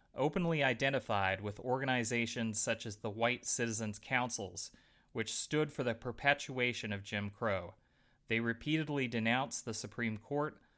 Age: 30-49